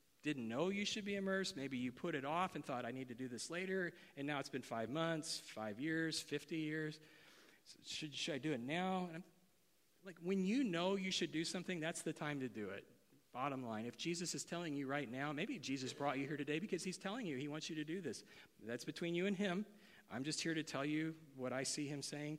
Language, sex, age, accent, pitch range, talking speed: English, male, 40-59, American, 130-165 Hz, 250 wpm